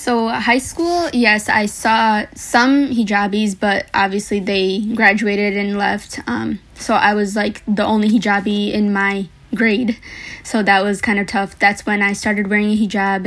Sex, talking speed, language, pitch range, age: female, 170 wpm, English, 200-225 Hz, 20-39